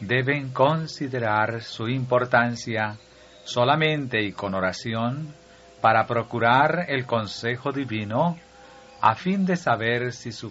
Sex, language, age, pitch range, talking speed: male, Spanish, 50-69, 105-165 Hz, 110 wpm